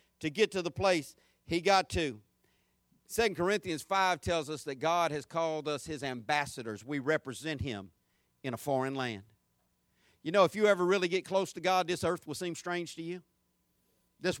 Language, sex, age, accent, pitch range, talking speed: English, male, 50-69, American, 140-200 Hz, 185 wpm